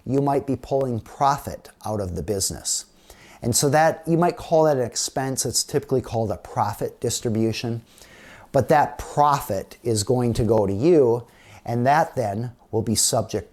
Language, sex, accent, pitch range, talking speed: English, male, American, 105-140 Hz, 175 wpm